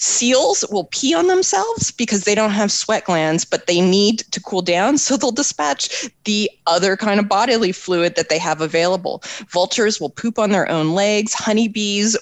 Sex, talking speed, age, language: female, 185 wpm, 20-39, English